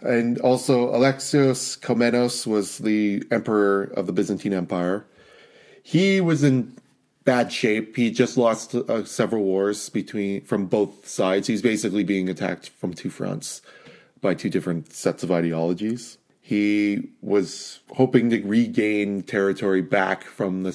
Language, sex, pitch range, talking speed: English, male, 100-125 Hz, 140 wpm